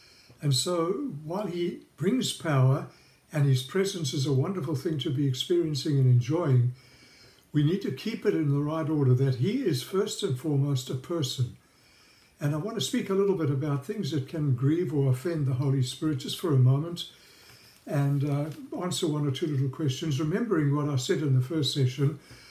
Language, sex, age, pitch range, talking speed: English, male, 60-79, 135-165 Hz, 195 wpm